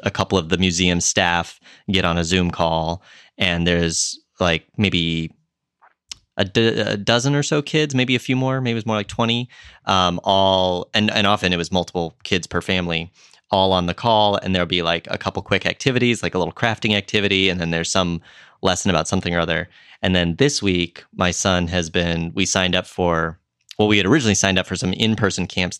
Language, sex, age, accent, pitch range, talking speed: English, male, 20-39, American, 85-105 Hz, 210 wpm